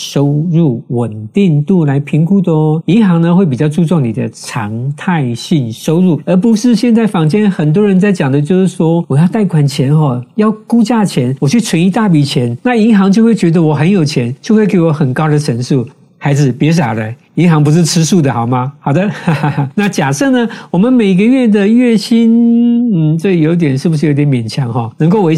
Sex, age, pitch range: male, 50-69, 140-195 Hz